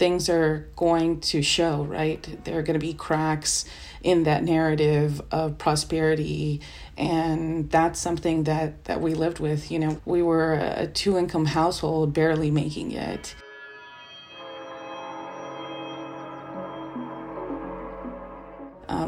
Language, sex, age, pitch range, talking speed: English, female, 30-49, 150-165 Hz, 115 wpm